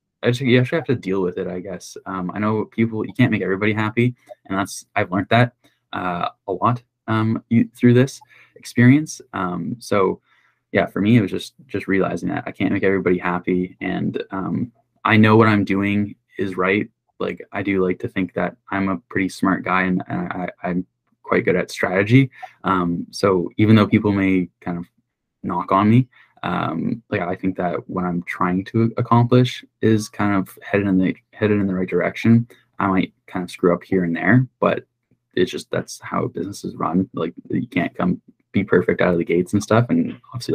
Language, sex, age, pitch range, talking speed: English, male, 10-29, 95-120 Hz, 205 wpm